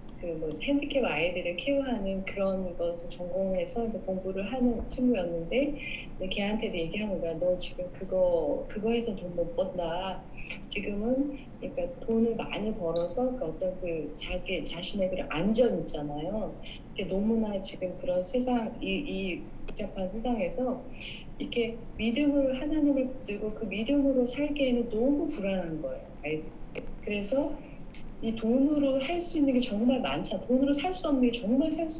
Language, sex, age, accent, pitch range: Korean, female, 30-49, native, 185-260 Hz